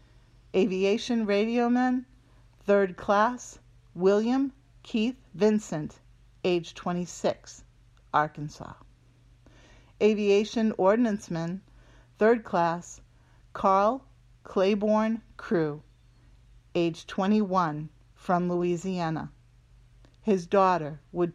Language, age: English, 50-69